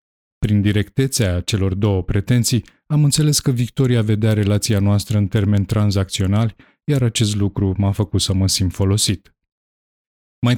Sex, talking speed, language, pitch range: male, 140 wpm, Romanian, 100-120 Hz